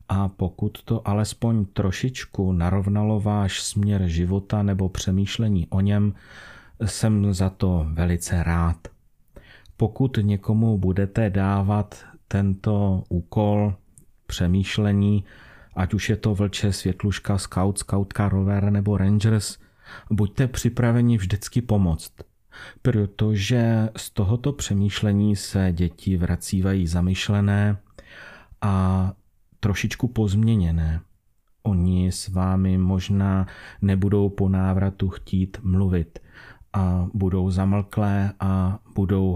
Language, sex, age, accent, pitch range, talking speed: Czech, male, 40-59, native, 95-105 Hz, 100 wpm